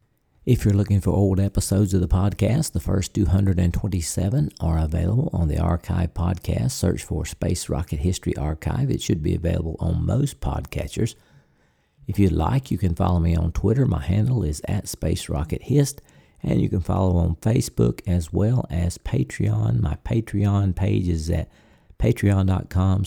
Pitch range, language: 85-110 Hz, English